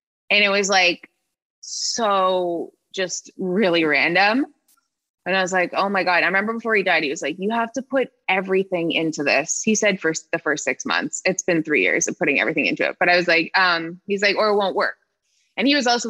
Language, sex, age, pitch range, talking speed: English, female, 20-39, 165-215 Hz, 225 wpm